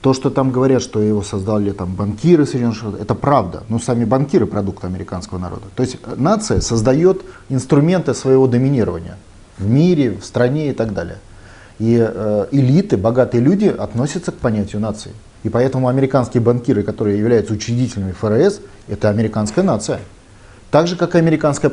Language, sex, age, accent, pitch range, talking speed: Russian, male, 30-49, native, 105-135 Hz, 150 wpm